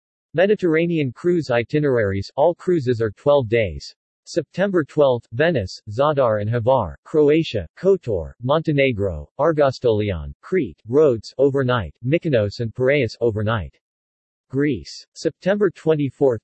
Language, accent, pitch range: English, American, 105-150 Hz